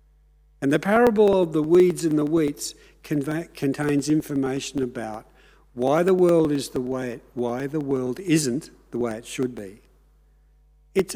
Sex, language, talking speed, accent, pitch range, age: male, English, 155 wpm, Australian, 120-170 Hz, 60-79